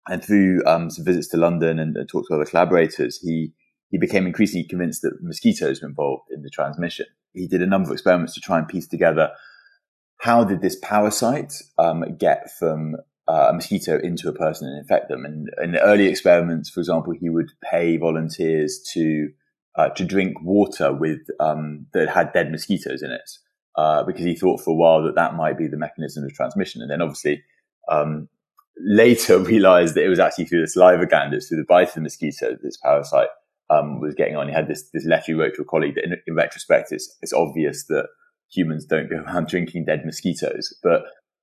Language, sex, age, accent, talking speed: English, male, 20-39, British, 210 wpm